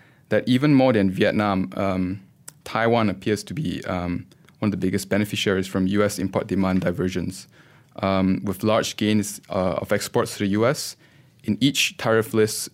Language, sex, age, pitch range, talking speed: English, male, 20-39, 95-110 Hz, 165 wpm